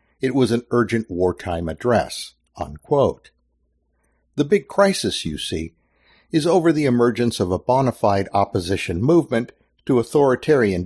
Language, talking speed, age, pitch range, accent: English, 135 wpm, 60-79, 100-135 Hz, American